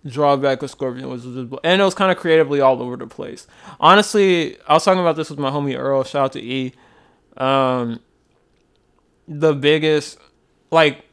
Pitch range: 135-155 Hz